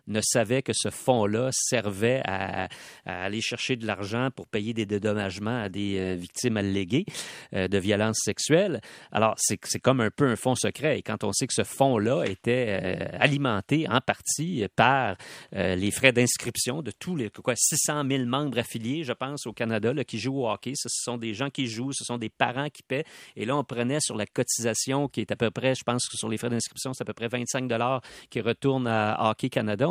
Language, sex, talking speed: French, male, 210 wpm